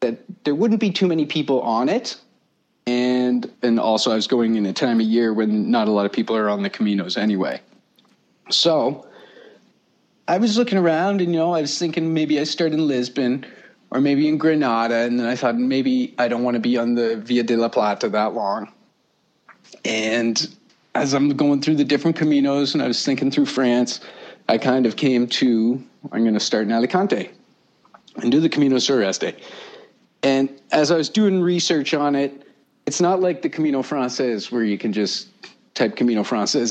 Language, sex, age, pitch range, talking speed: English, male, 40-59, 120-160 Hz, 195 wpm